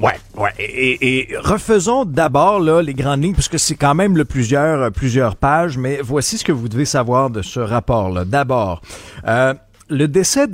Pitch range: 110-150 Hz